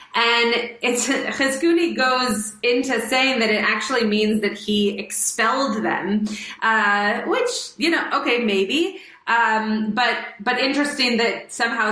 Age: 30-49